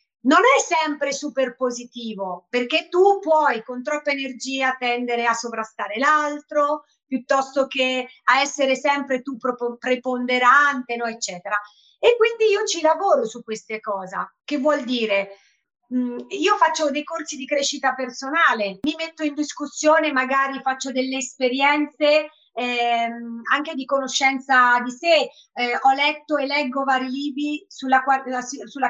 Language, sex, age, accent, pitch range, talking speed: Italian, female, 30-49, native, 245-295 Hz, 135 wpm